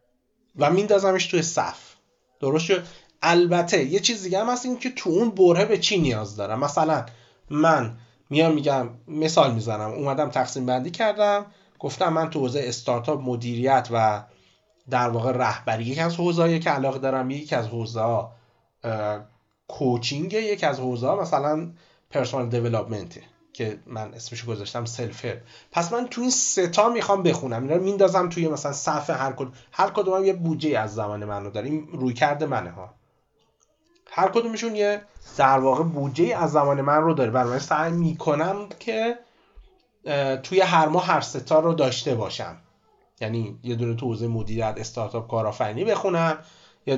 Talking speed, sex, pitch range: 155 wpm, male, 120-175 Hz